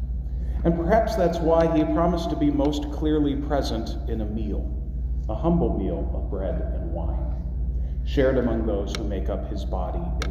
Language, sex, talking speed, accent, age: English, male, 175 wpm, American, 40-59